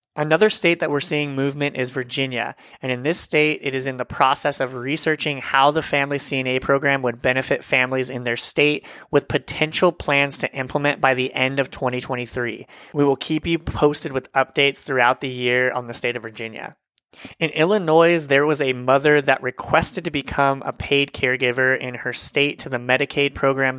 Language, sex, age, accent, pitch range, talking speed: English, male, 30-49, American, 130-145 Hz, 190 wpm